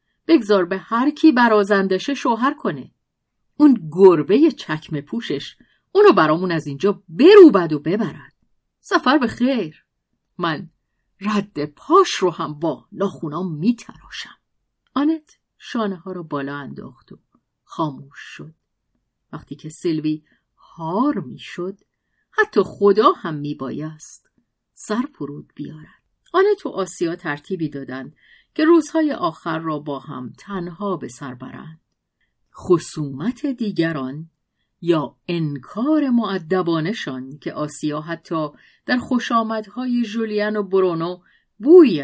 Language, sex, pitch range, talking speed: Persian, female, 155-230 Hz, 115 wpm